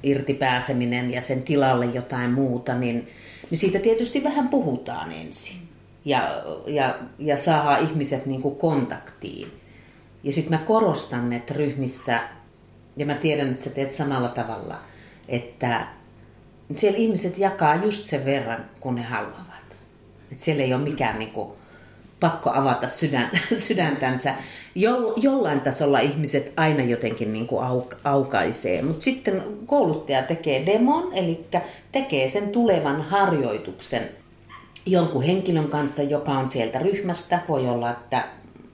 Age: 40-59